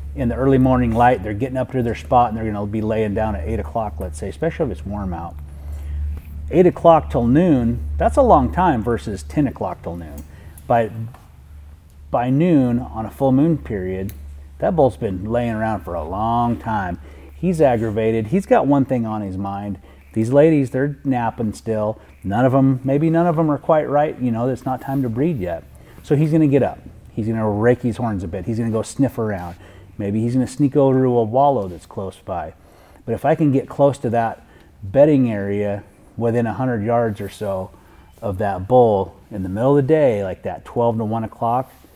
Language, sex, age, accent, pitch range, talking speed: English, male, 30-49, American, 100-130 Hz, 210 wpm